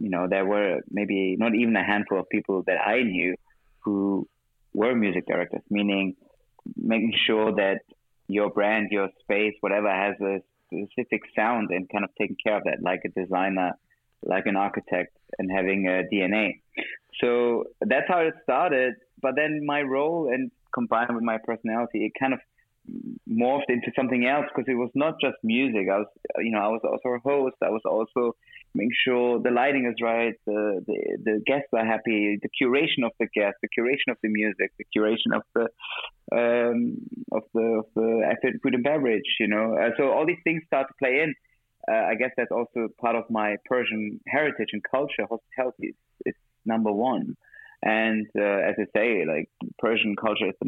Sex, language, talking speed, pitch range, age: male, English, 190 wpm, 105-125 Hz, 20-39